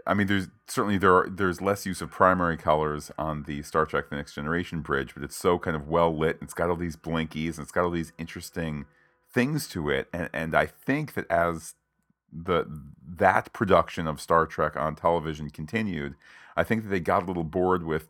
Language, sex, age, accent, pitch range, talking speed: English, male, 40-59, American, 80-100 Hz, 220 wpm